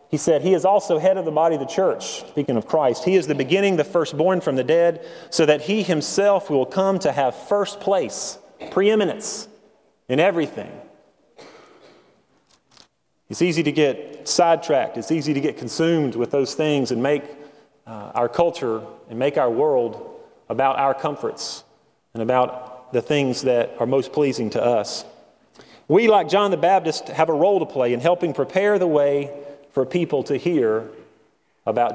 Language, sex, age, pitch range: English, male, 30-49, 135-175 Hz